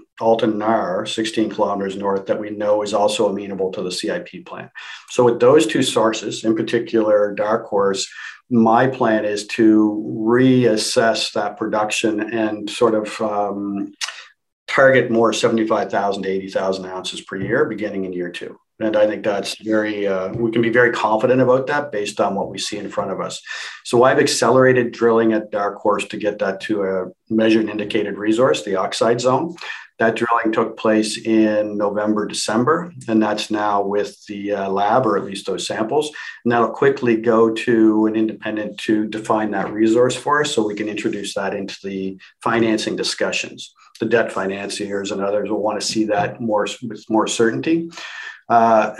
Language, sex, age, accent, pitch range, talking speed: English, male, 50-69, American, 105-115 Hz, 175 wpm